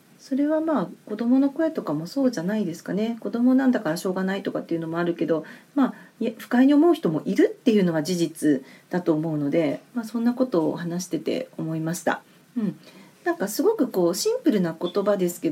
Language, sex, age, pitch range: Japanese, female, 40-59, 175-255 Hz